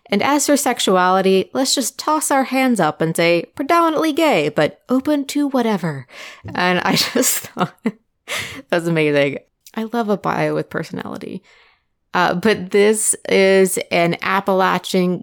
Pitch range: 165-215 Hz